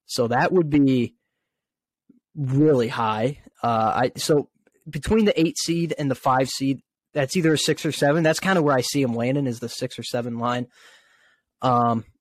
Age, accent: 20-39, American